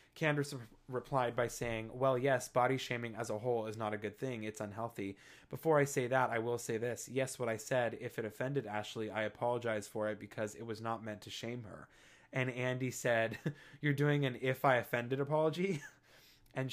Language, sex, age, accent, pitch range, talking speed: English, male, 20-39, American, 110-130 Hz, 205 wpm